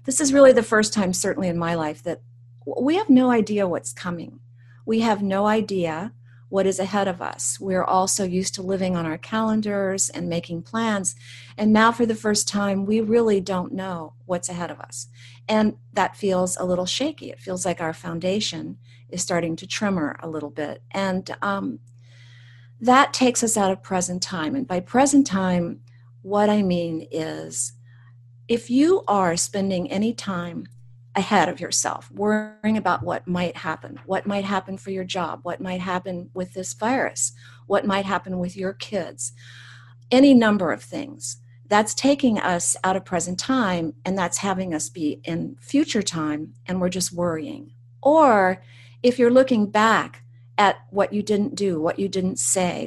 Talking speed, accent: 175 wpm, American